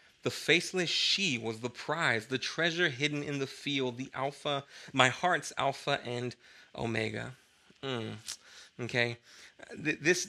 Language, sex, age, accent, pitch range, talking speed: English, male, 20-39, American, 125-175 Hz, 130 wpm